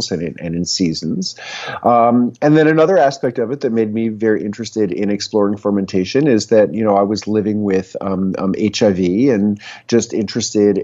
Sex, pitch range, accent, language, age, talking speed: male, 105-120 Hz, American, English, 40-59, 185 wpm